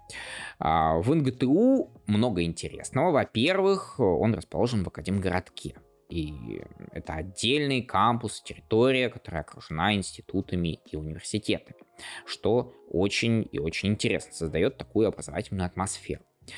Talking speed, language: 100 wpm, Russian